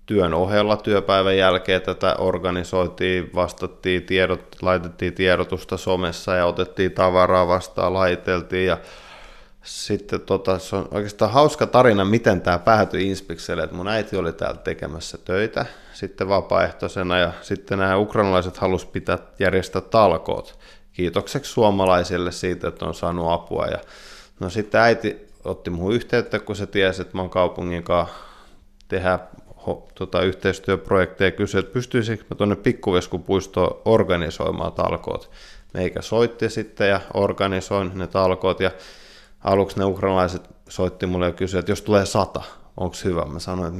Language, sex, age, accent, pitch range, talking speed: Finnish, male, 20-39, native, 90-100 Hz, 140 wpm